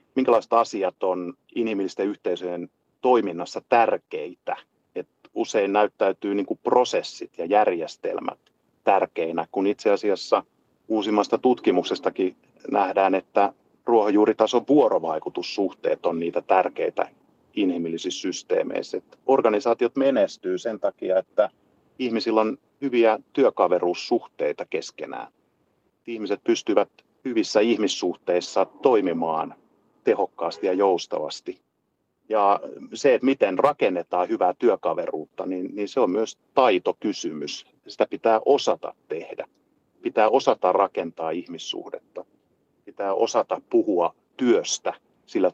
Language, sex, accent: Finnish, male, native